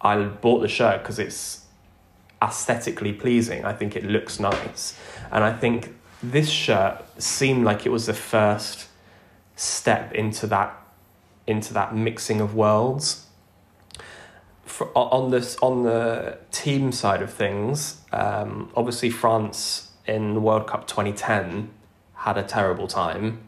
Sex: male